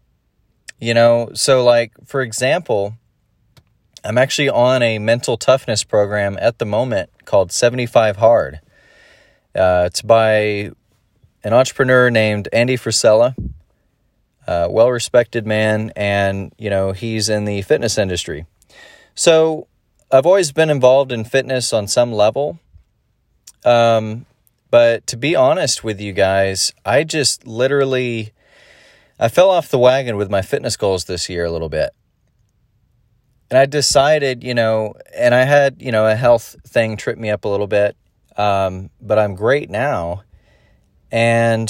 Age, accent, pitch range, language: 30-49, American, 105-125 Hz, English